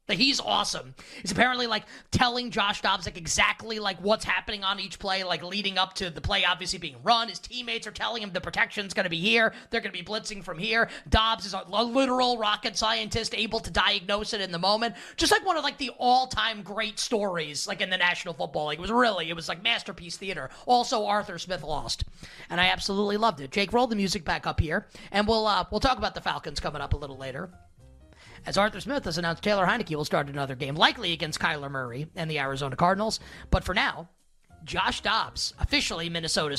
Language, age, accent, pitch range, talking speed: English, 30-49, American, 170-225 Hz, 220 wpm